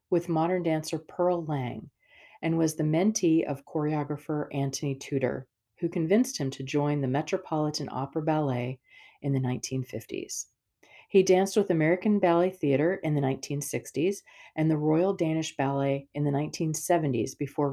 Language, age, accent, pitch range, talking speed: English, 40-59, American, 135-170 Hz, 145 wpm